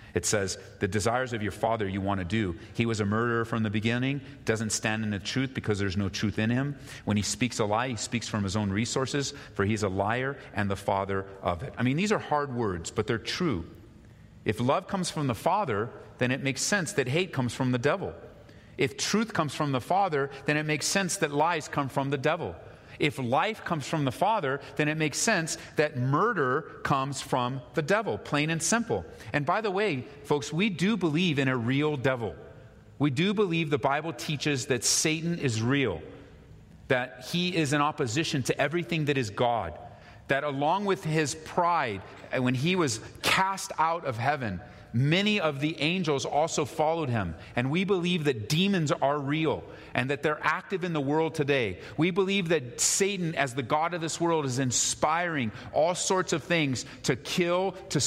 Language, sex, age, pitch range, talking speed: English, male, 40-59, 120-165 Hz, 200 wpm